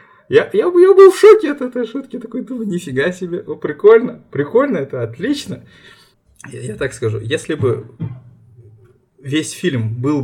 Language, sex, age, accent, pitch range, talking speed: Russian, male, 20-39, native, 115-150 Hz, 150 wpm